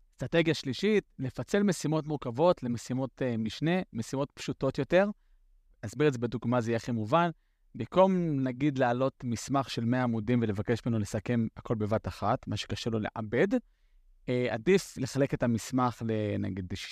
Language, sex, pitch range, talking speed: Hebrew, male, 115-155 Hz, 150 wpm